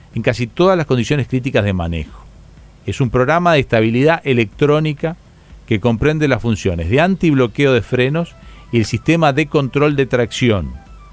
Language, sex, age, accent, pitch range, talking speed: Spanish, male, 40-59, Argentinian, 115-165 Hz, 155 wpm